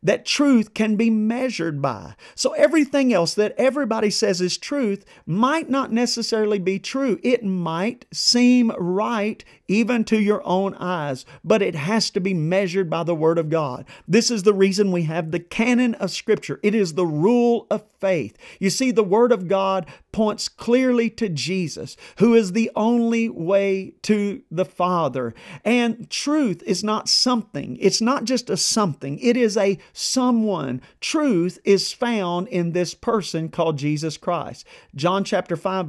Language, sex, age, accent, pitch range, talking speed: English, male, 40-59, American, 175-230 Hz, 165 wpm